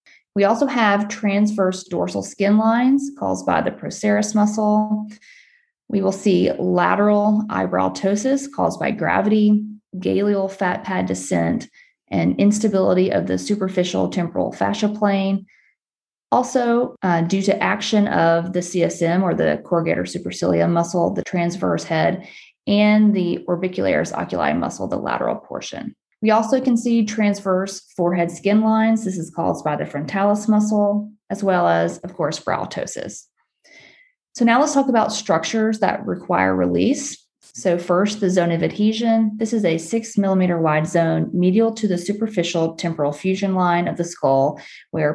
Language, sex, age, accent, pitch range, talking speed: English, female, 30-49, American, 175-215 Hz, 150 wpm